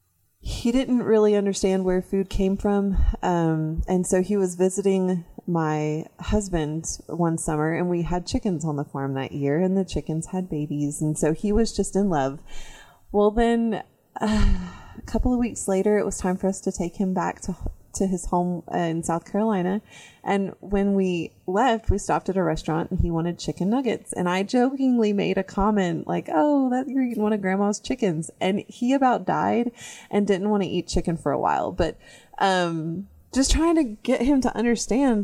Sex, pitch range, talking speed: female, 165-210 Hz, 190 wpm